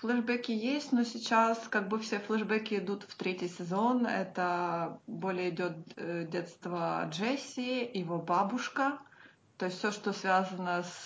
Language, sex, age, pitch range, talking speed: Russian, female, 20-39, 185-235 Hz, 135 wpm